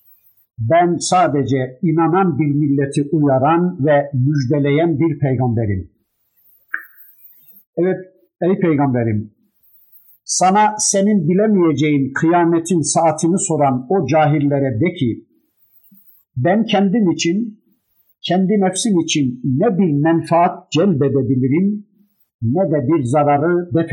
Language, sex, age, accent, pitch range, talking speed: Turkish, male, 50-69, native, 140-180 Hz, 95 wpm